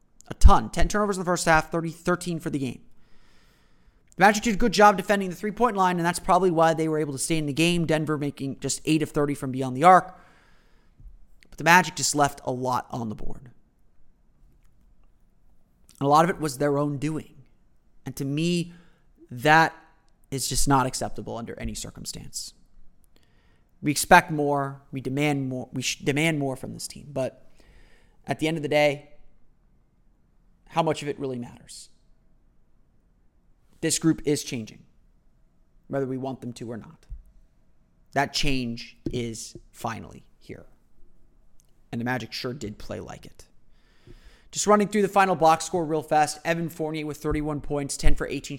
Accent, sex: American, male